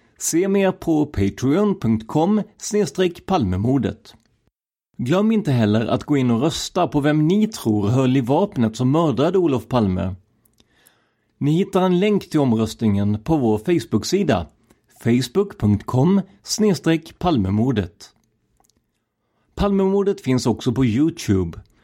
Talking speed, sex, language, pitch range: 105 wpm, male, Swedish, 110-175 Hz